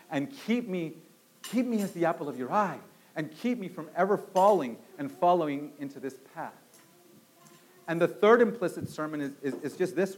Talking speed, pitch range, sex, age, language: 190 wpm, 170-240 Hz, male, 40-59, English